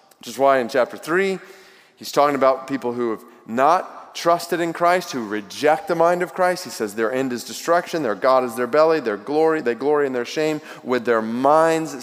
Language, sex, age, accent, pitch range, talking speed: English, male, 30-49, American, 105-140 Hz, 215 wpm